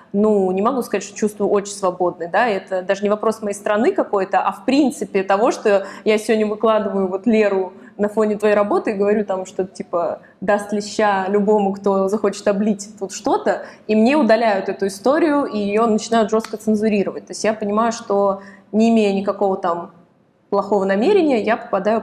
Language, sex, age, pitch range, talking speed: Russian, female, 20-39, 195-230 Hz, 185 wpm